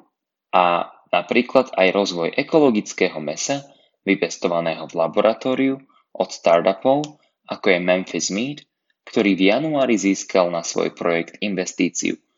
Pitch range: 90-120 Hz